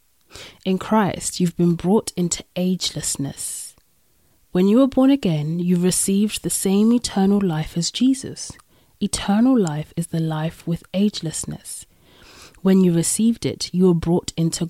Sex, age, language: female, 20-39, English